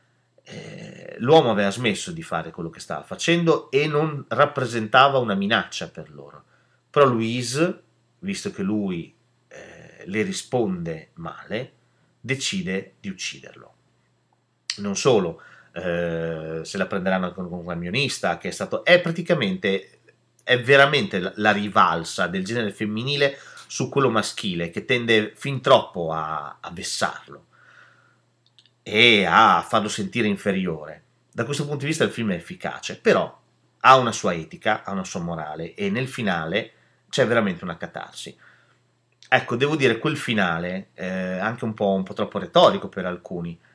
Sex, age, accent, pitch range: male, 30-49, native, 95-140 Hz